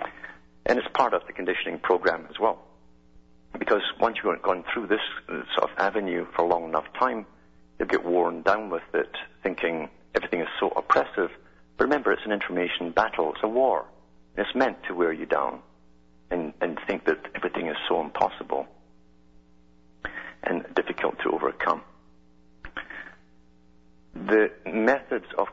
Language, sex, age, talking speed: English, male, 50-69, 150 wpm